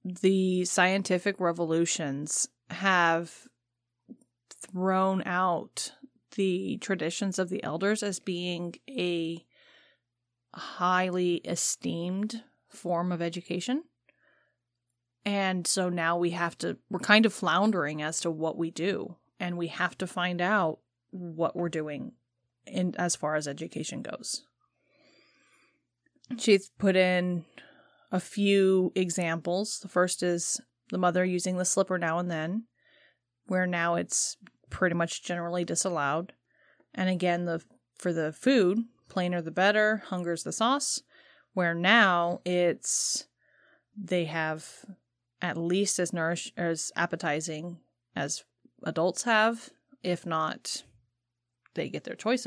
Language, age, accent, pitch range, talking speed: English, 30-49, American, 165-195 Hz, 120 wpm